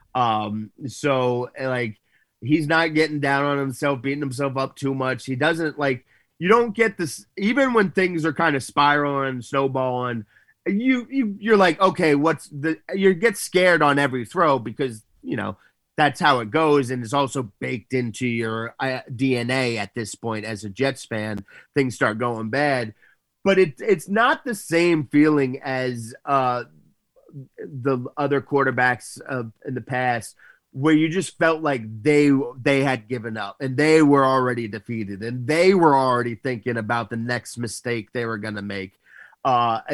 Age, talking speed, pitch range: 30-49, 170 wpm, 120-150 Hz